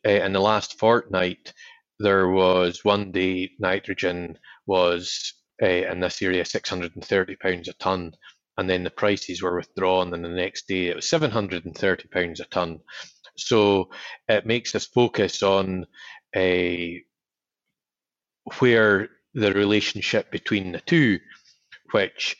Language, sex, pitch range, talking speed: English, male, 90-105 Hz, 125 wpm